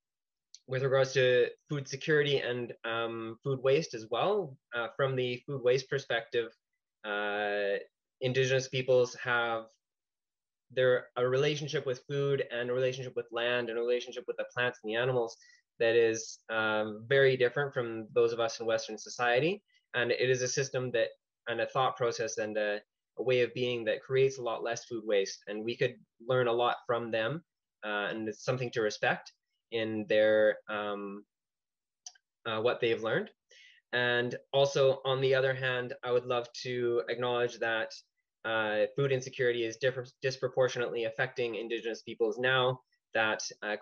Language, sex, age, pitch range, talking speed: English, male, 20-39, 110-135 Hz, 165 wpm